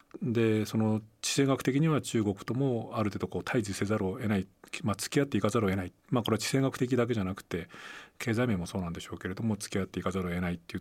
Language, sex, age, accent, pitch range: Japanese, male, 40-59, native, 90-110 Hz